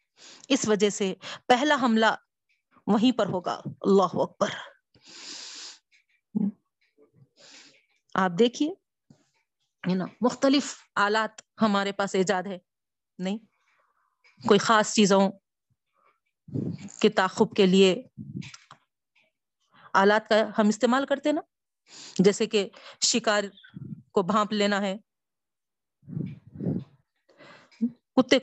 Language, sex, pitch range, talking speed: Urdu, female, 180-225 Hz, 85 wpm